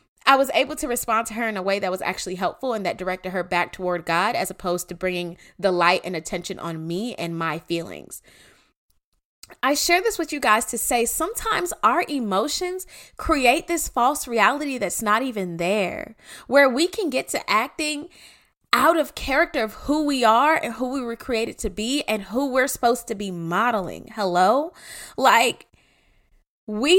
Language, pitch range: English, 195-280 Hz